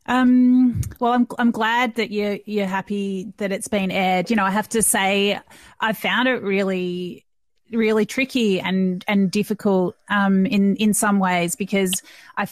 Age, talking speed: 30-49, 170 wpm